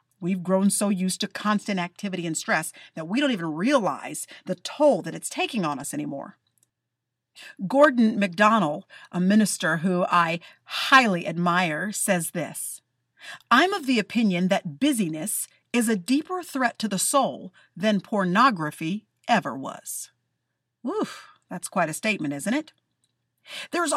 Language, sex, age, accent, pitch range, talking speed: English, female, 50-69, American, 185-270 Hz, 145 wpm